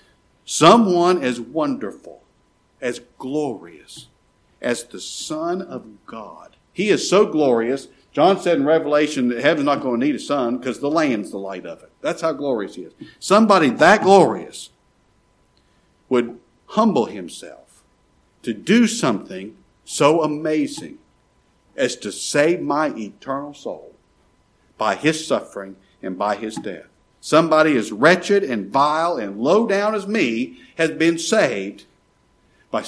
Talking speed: 140 wpm